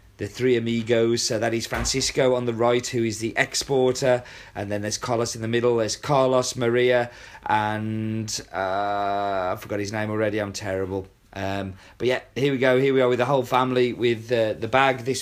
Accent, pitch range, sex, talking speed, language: British, 105-135 Hz, male, 200 wpm, English